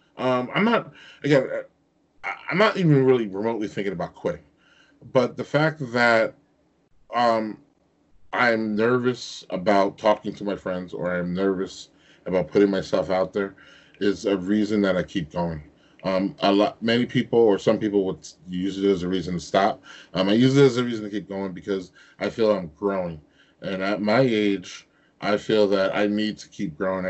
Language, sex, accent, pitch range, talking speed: English, male, American, 100-135 Hz, 180 wpm